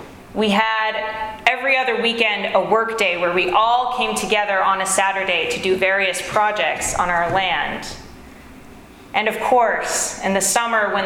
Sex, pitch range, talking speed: female, 195-245 Hz, 165 wpm